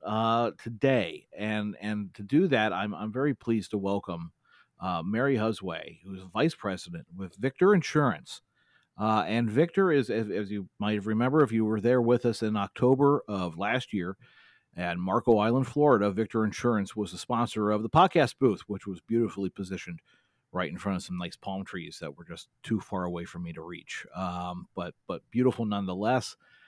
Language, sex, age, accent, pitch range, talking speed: English, male, 40-59, American, 100-130 Hz, 185 wpm